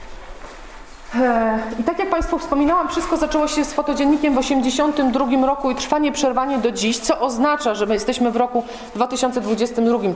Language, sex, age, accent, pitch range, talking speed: Polish, female, 30-49, native, 225-280 Hz, 155 wpm